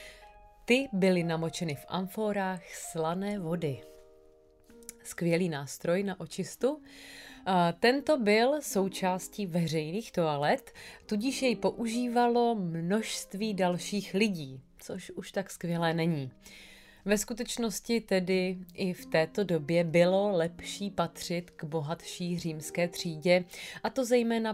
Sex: female